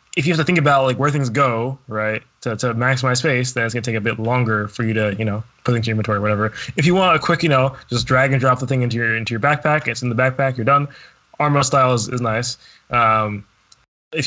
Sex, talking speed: male, 275 wpm